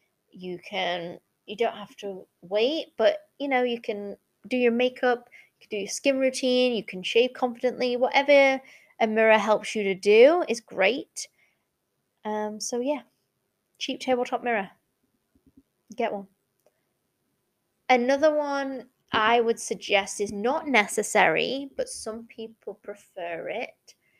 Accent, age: British, 20-39